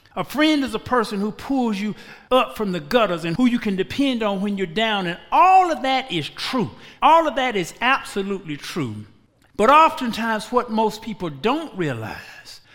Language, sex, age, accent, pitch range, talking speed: English, male, 60-79, American, 190-265 Hz, 190 wpm